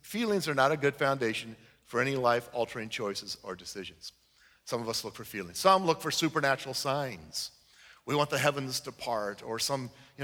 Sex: male